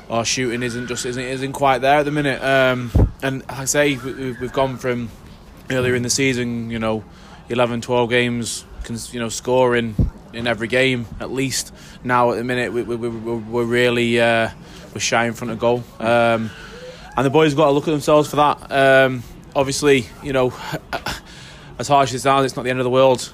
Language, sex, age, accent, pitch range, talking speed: English, male, 20-39, British, 120-130 Hz, 205 wpm